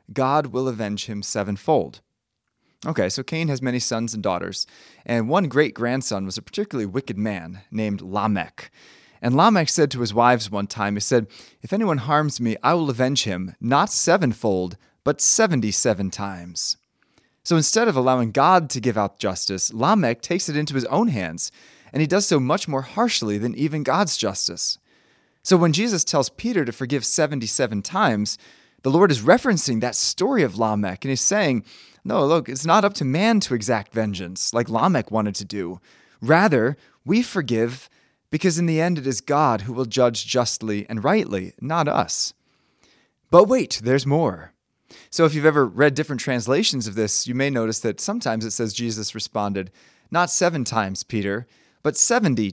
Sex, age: male, 20-39